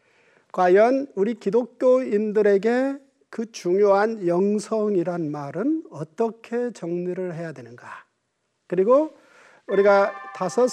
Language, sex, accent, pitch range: Korean, male, native, 180-245 Hz